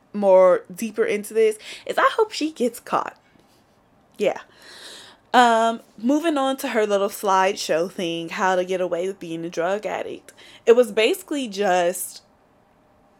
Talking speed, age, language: 145 wpm, 10-29, English